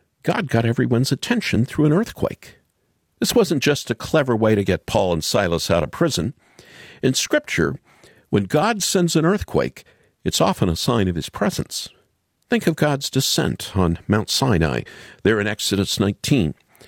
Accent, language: American, English